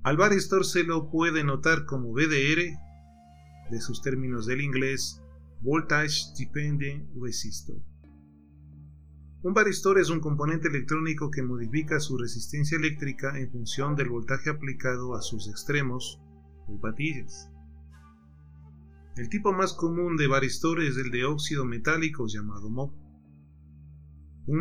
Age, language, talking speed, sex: 30-49, Spanish, 125 wpm, male